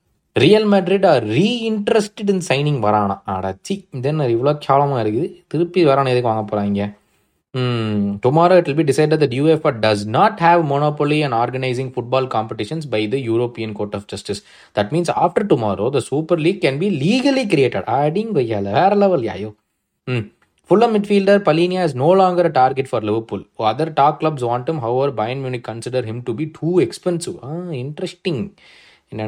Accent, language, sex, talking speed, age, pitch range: native, Tamil, male, 170 wpm, 20-39, 120-180 Hz